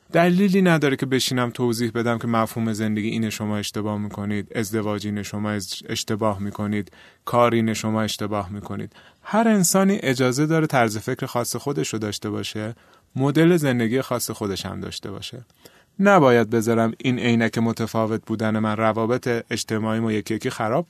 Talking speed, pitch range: 155 wpm, 110-140 Hz